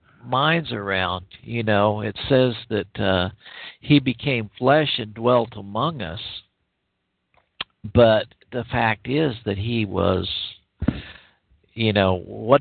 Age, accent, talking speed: 50-69, American, 120 wpm